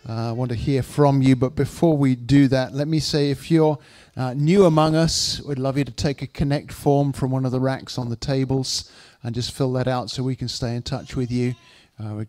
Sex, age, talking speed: male, 50-69, 250 wpm